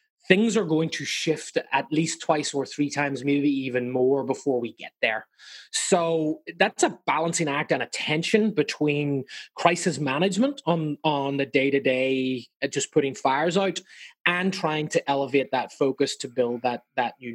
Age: 20-39